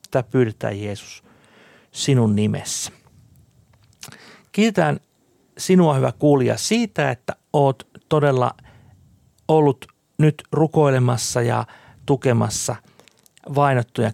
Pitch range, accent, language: 115-145 Hz, native, Finnish